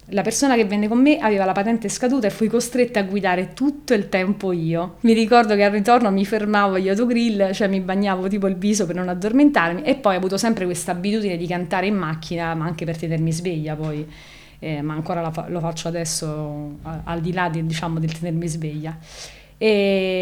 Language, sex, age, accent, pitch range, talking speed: Italian, female, 30-49, native, 170-210 Hz, 200 wpm